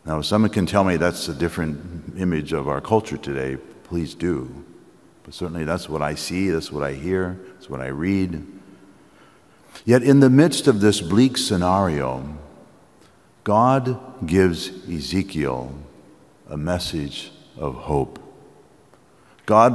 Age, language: 60-79, English